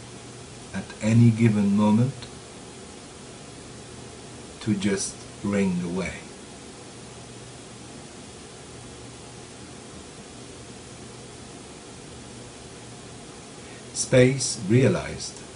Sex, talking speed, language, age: male, 40 wpm, English, 60-79